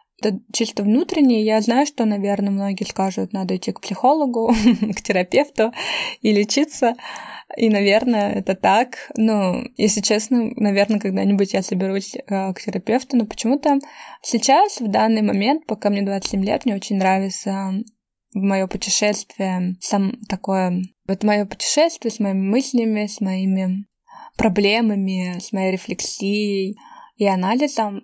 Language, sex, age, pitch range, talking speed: Russian, female, 20-39, 195-225 Hz, 130 wpm